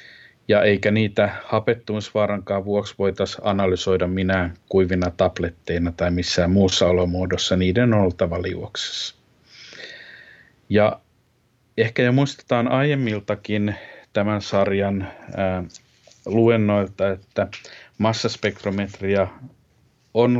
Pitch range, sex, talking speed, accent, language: 95-105 Hz, male, 85 wpm, native, Finnish